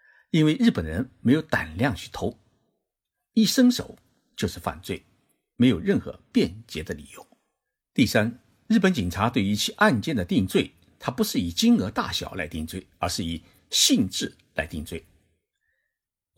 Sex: male